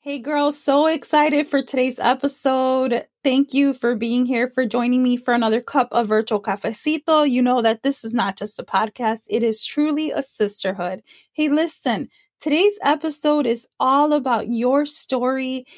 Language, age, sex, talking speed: English, 20-39, female, 165 wpm